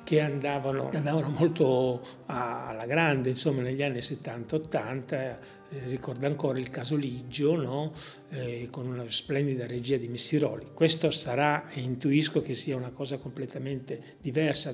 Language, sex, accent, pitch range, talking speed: Italian, male, native, 135-165 Hz, 140 wpm